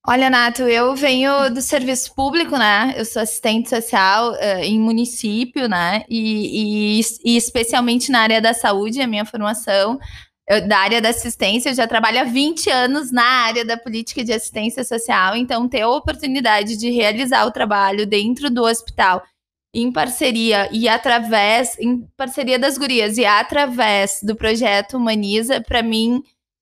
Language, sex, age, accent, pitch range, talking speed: Portuguese, female, 20-39, Brazilian, 220-260 Hz, 155 wpm